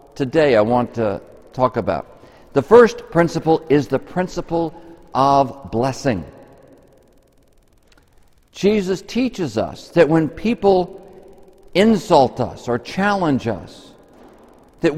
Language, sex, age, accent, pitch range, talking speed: English, male, 60-79, American, 135-175 Hz, 105 wpm